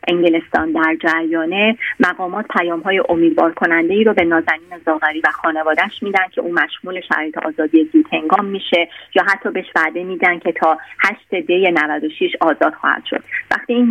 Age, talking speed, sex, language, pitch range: 30-49, 160 wpm, female, English, 160-210 Hz